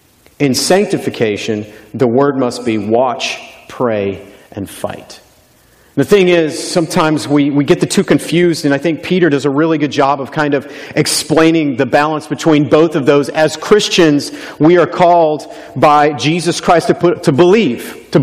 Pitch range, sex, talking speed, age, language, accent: 135-170 Hz, male, 170 wpm, 40-59, English, American